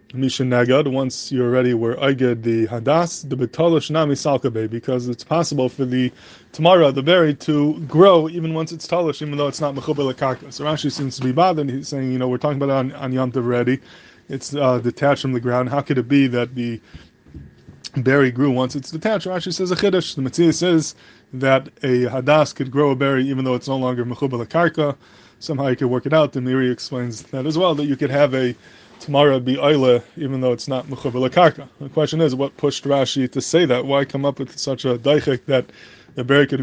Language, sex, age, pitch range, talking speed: English, male, 20-39, 125-145 Hz, 225 wpm